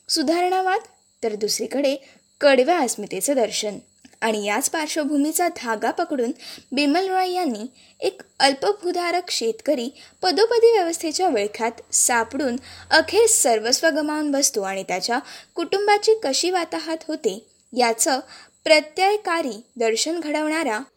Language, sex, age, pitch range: Marathi, female, 20-39, 230-345 Hz